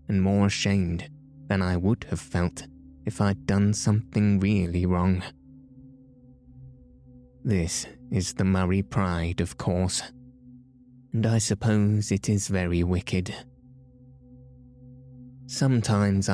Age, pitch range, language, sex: 20-39, 90-115 Hz, English, male